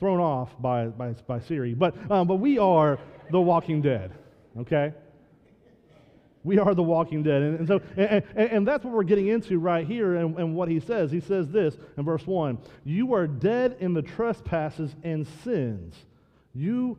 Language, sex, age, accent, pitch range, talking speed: English, male, 40-59, American, 140-180 Hz, 185 wpm